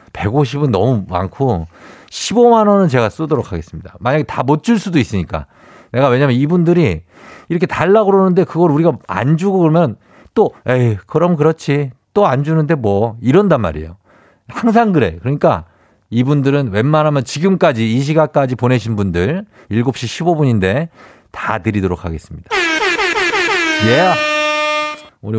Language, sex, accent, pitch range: Korean, male, native, 100-165 Hz